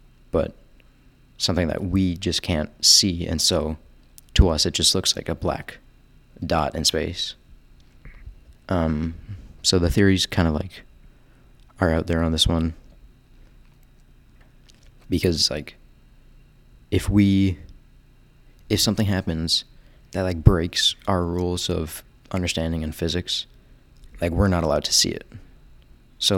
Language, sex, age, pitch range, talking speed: English, male, 30-49, 80-100 Hz, 130 wpm